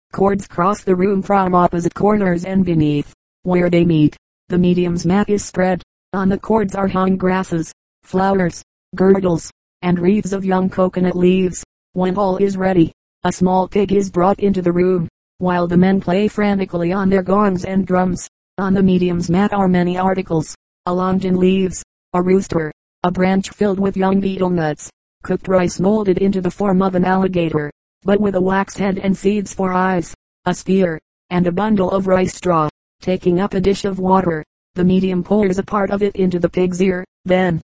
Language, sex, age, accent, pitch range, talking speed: English, female, 30-49, American, 180-195 Hz, 185 wpm